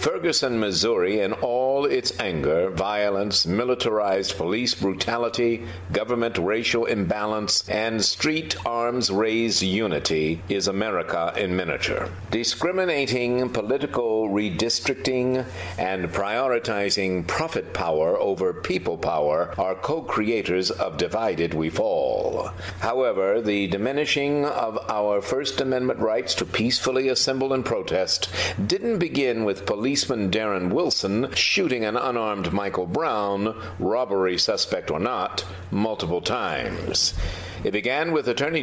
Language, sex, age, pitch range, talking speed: English, male, 60-79, 100-135 Hz, 110 wpm